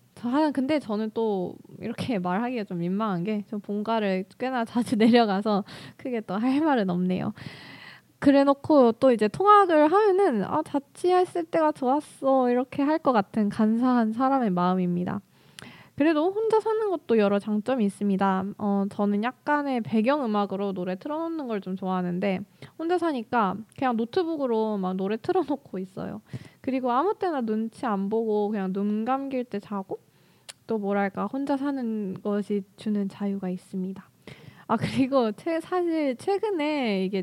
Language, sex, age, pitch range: Korean, female, 20-39, 200-275 Hz